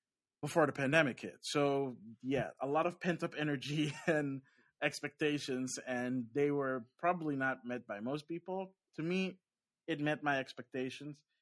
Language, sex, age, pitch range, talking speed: English, male, 20-39, 120-150 Hz, 145 wpm